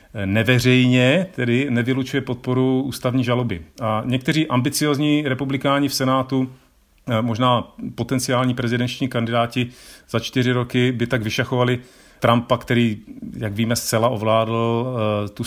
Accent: native